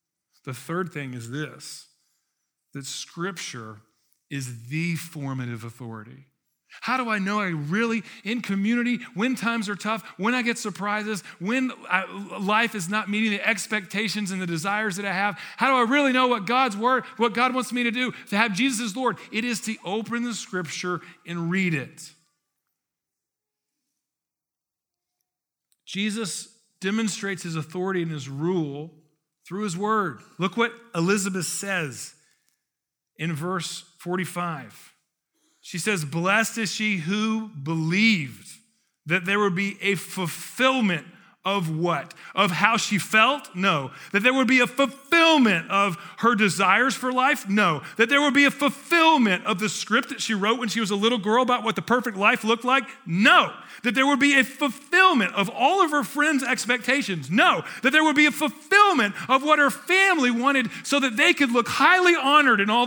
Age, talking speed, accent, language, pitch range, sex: 40-59, 170 wpm, American, English, 175-245 Hz, male